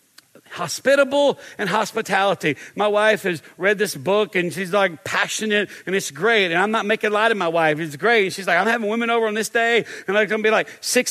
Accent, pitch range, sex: American, 200-245 Hz, male